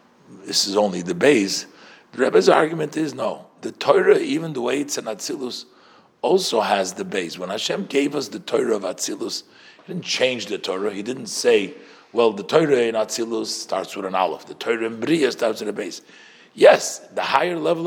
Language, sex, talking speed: English, male, 200 wpm